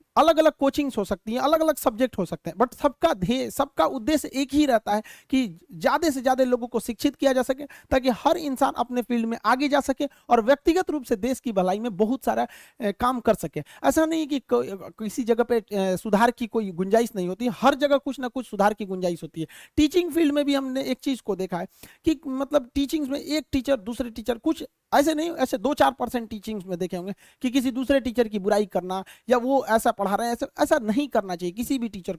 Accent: native